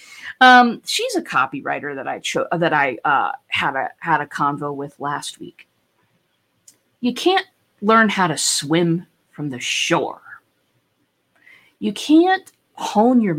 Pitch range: 155-245 Hz